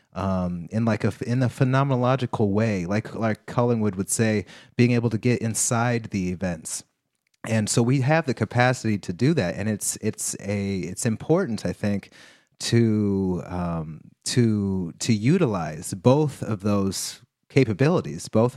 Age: 30-49